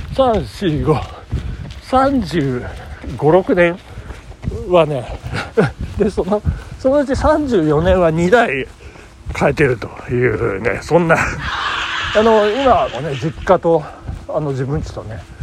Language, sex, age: Japanese, male, 60-79